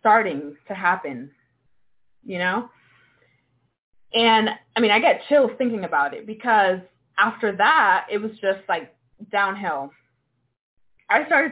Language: English